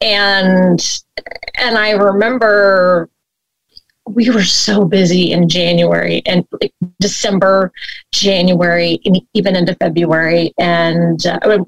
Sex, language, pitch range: female, English, 175-220 Hz